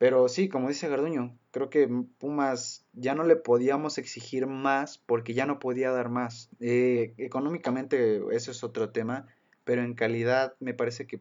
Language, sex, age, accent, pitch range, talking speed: Spanish, male, 20-39, Mexican, 115-135 Hz, 170 wpm